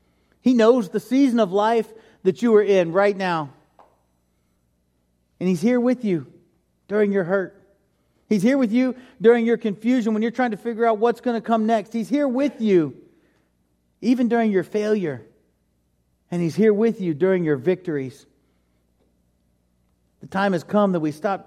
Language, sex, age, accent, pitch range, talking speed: English, male, 40-59, American, 155-225 Hz, 170 wpm